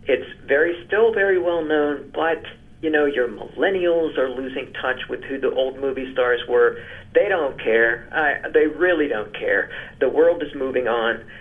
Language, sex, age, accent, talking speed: English, male, 50-69, American, 180 wpm